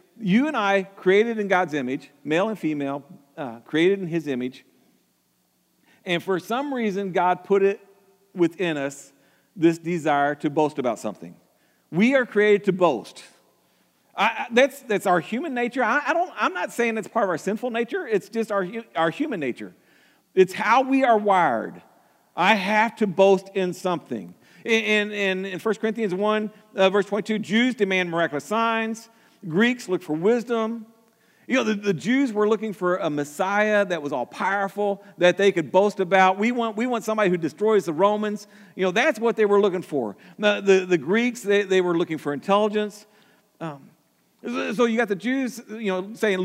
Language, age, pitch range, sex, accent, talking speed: English, 50-69, 170-220 Hz, male, American, 180 wpm